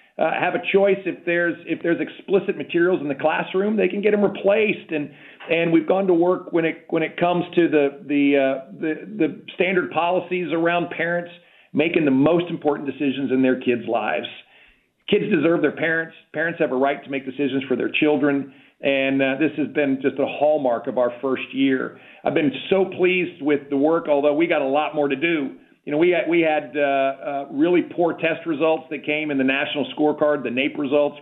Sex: male